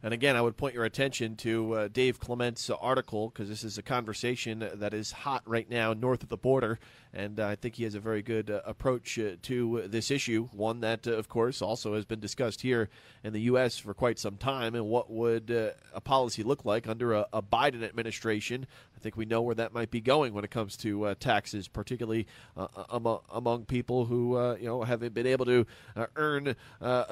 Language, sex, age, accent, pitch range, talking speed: English, male, 30-49, American, 110-130 Hz, 230 wpm